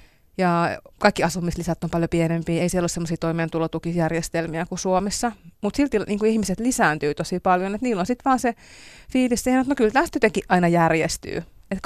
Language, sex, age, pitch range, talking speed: Finnish, female, 30-49, 165-210 Hz, 180 wpm